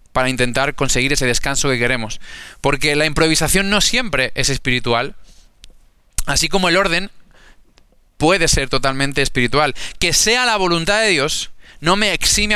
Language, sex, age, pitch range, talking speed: Spanish, male, 20-39, 135-195 Hz, 150 wpm